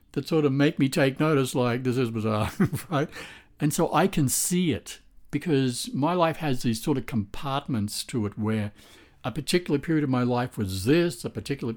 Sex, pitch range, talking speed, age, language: male, 105-155 Hz, 200 wpm, 60-79, English